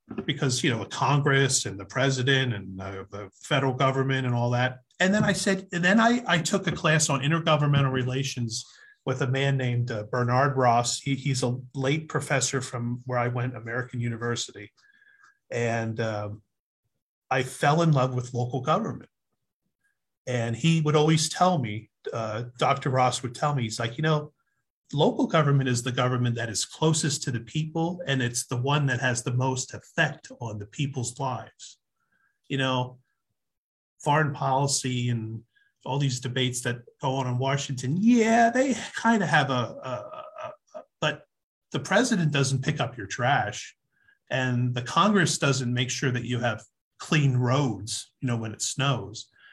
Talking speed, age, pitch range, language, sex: 175 wpm, 30-49, 120-155 Hz, English, male